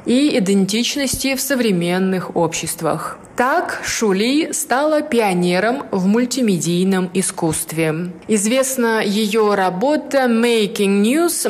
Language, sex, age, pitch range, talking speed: Russian, female, 20-39, 190-245 Hz, 90 wpm